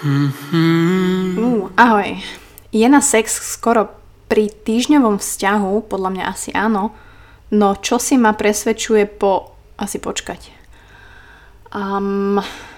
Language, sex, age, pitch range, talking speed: Slovak, female, 20-39, 195-220 Hz, 105 wpm